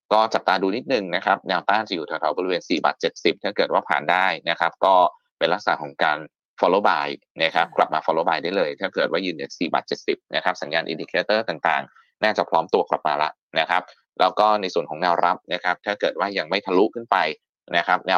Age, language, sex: 20-39, Thai, male